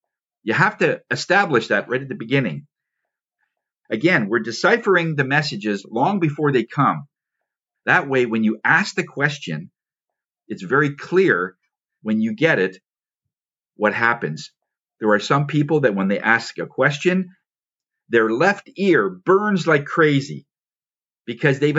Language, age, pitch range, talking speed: English, 50-69, 115-155 Hz, 145 wpm